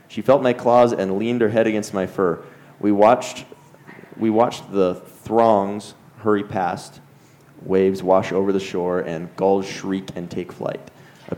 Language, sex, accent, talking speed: English, male, American, 165 wpm